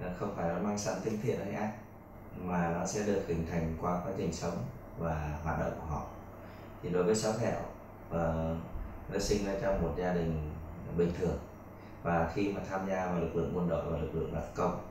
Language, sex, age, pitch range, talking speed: Vietnamese, male, 20-39, 80-105 Hz, 215 wpm